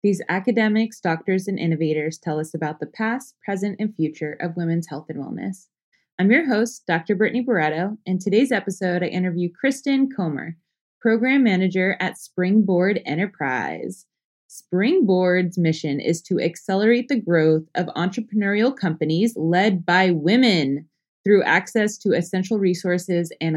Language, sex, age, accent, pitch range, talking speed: English, female, 20-39, American, 160-210 Hz, 140 wpm